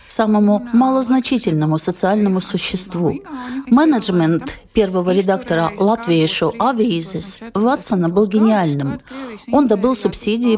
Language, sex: Russian, female